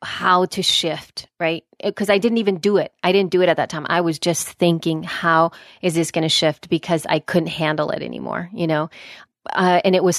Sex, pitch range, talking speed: female, 160-185 Hz, 230 wpm